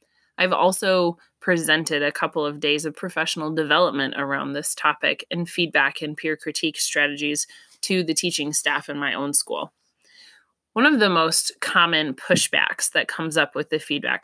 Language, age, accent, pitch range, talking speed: English, 20-39, American, 145-170 Hz, 165 wpm